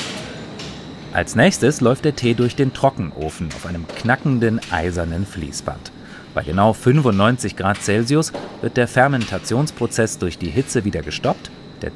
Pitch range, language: 90-125 Hz, German